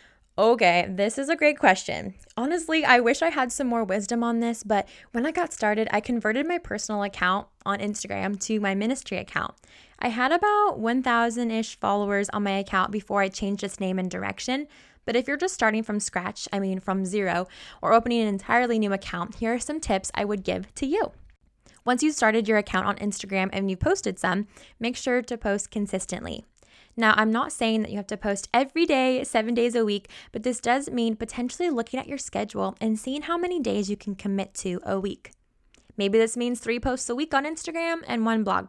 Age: 10-29